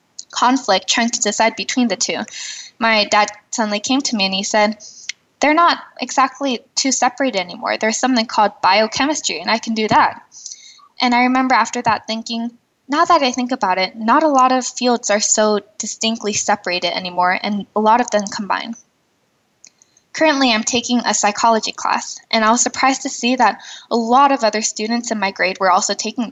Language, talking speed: English, 190 wpm